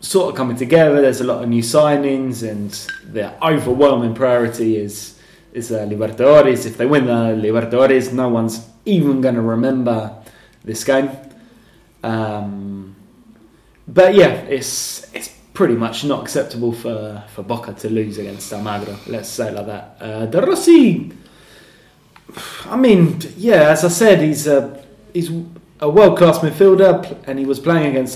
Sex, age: male, 20-39